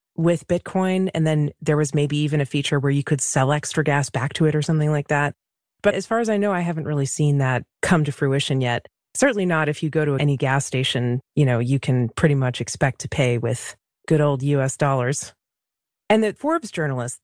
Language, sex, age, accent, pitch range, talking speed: English, female, 30-49, American, 140-190 Hz, 225 wpm